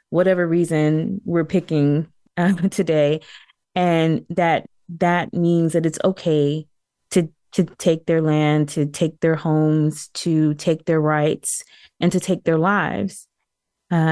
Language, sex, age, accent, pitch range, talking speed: English, female, 20-39, American, 155-180 Hz, 135 wpm